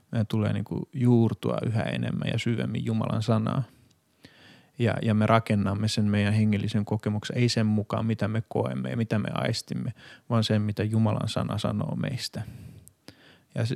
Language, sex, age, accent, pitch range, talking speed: Finnish, male, 30-49, native, 110-125 Hz, 155 wpm